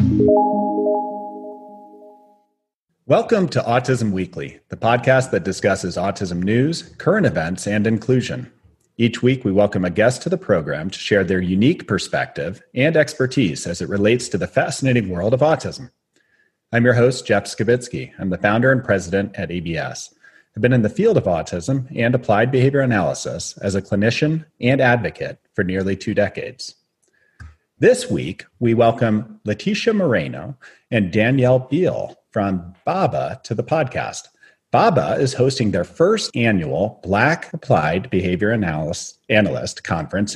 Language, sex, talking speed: English, male, 145 wpm